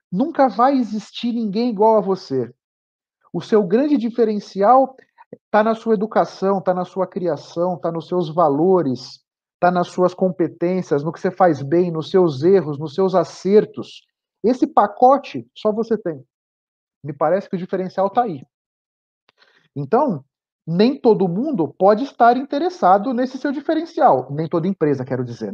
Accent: Brazilian